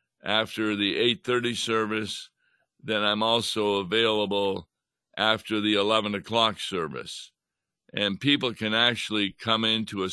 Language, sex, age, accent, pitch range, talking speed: English, male, 60-79, American, 105-125 Hz, 120 wpm